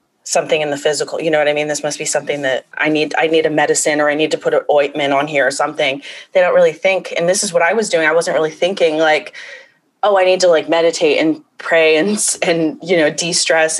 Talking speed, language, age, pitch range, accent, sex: 260 wpm, English, 20-39, 145-180 Hz, American, female